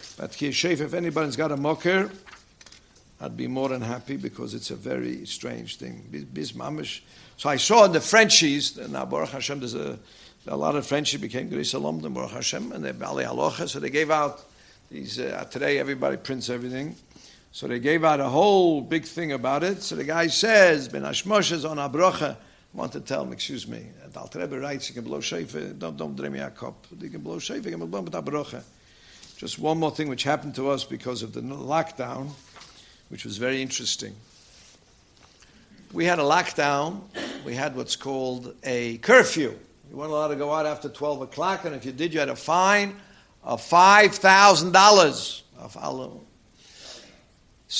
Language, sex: English, male